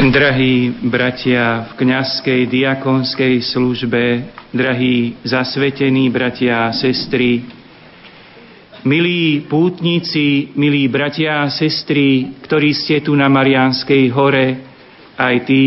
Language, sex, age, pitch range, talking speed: Slovak, male, 40-59, 125-155 Hz, 95 wpm